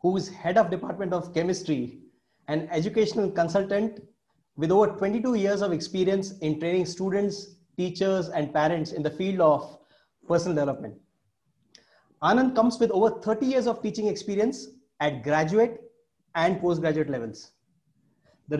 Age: 30-49